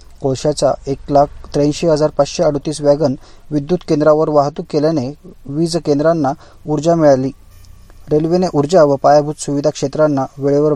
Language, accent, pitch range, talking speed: Marathi, native, 135-155 Hz, 130 wpm